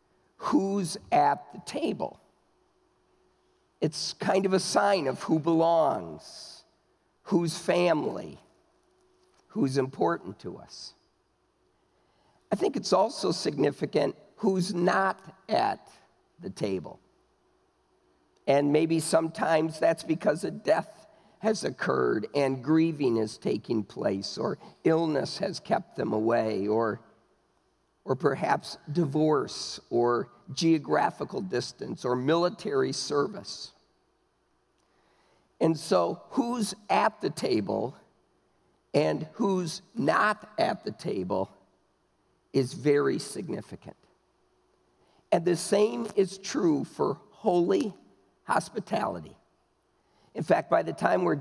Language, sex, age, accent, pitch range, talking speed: English, male, 50-69, American, 155-210 Hz, 100 wpm